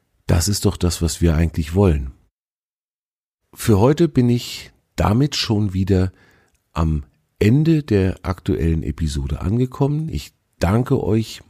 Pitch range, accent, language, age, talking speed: 85-110 Hz, German, German, 50-69, 125 wpm